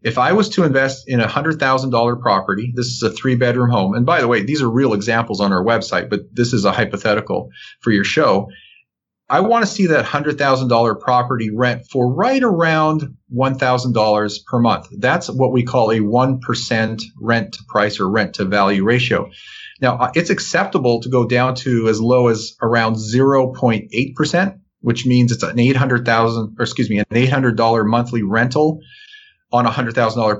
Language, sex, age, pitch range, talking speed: English, male, 40-59, 115-135 Hz, 175 wpm